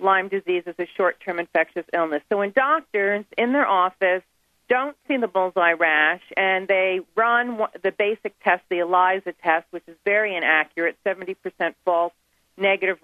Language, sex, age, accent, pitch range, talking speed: English, female, 40-59, American, 180-230 Hz, 155 wpm